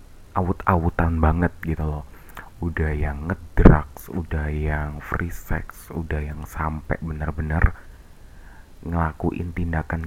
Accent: native